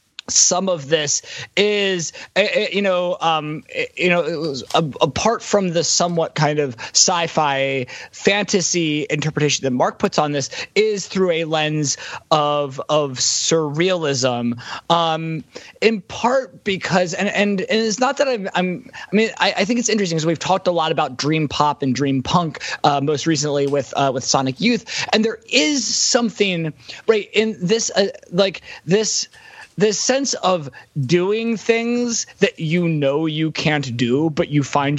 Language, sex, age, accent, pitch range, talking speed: English, male, 20-39, American, 150-215 Hz, 165 wpm